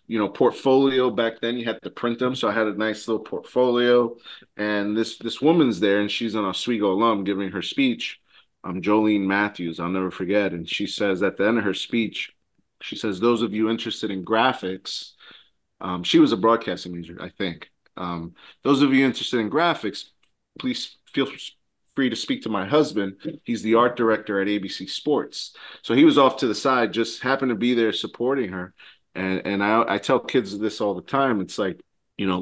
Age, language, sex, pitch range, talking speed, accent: 30-49, English, male, 95-115 Hz, 205 wpm, American